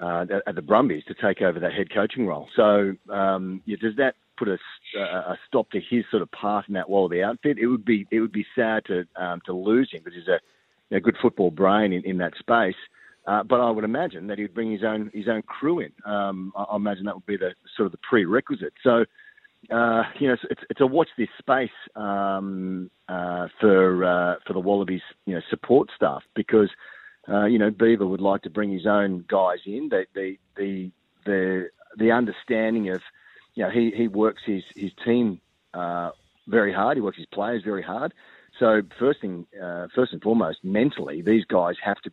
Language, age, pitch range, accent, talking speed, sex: English, 40-59, 95-110 Hz, Australian, 210 wpm, male